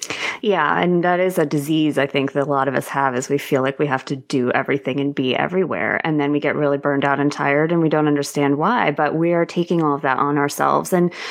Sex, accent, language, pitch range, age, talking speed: female, American, English, 145-185 Hz, 20-39, 265 wpm